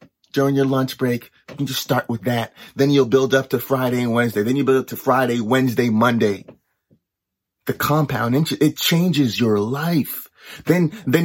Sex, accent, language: male, American, English